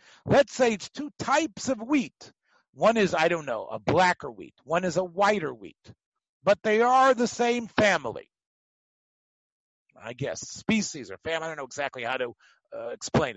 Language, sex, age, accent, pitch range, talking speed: English, male, 50-69, American, 155-215 Hz, 175 wpm